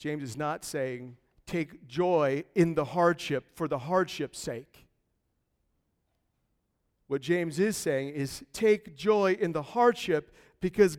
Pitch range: 120-170 Hz